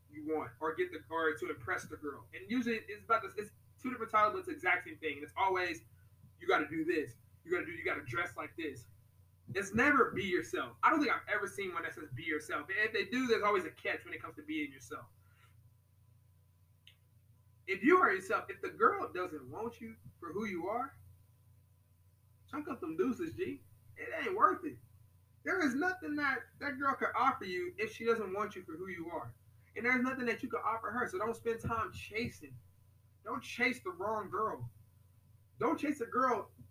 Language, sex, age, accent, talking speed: English, male, 20-39, American, 220 wpm